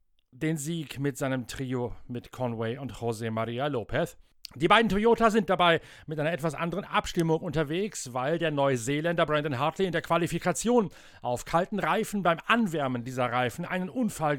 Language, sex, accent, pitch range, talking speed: German, male, German, 125-170 Hz, 165 wpm